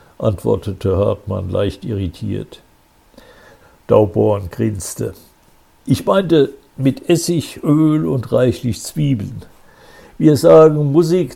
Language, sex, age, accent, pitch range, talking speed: German, male, 60-79, German, 110-140 Hz, 90 wpm